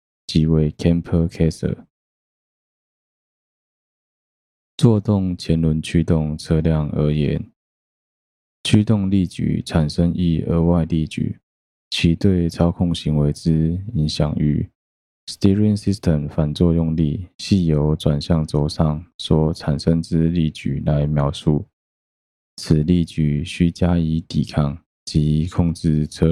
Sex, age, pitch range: male, 20-39, 75-85 Hz